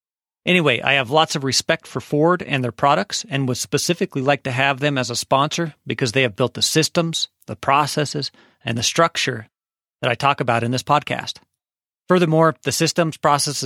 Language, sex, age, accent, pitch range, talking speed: English, male, 40-59, American, 125-160 Hz, 190 wpm